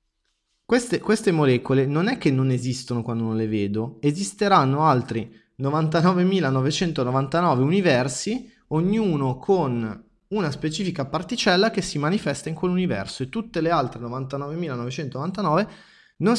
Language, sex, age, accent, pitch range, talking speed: Italian, male, 20-39, native, 110-165 Hz, 115 wpm